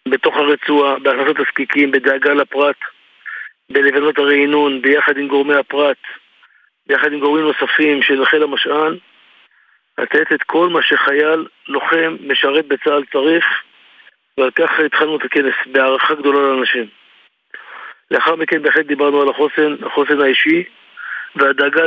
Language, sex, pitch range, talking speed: Hebrew, male, 140-150 Hz, 125 wpm